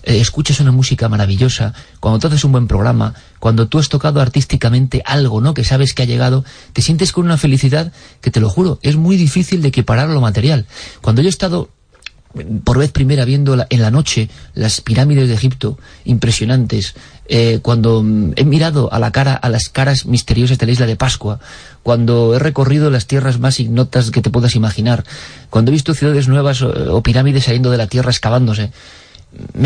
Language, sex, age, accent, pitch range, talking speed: Spanish, male, 40-59, Spanish, 115-145 Hz, 190 wpm